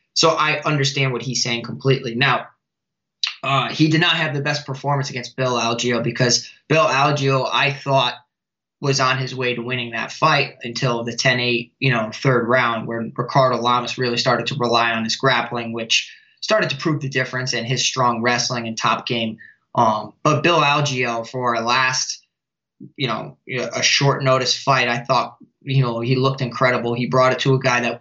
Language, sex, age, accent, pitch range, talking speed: English, male, 20-39, American, 120-140 Hz, 190 wpm